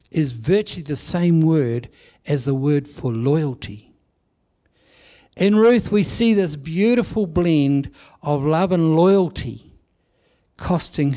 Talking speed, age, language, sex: 120 wpm, 60-79, English, male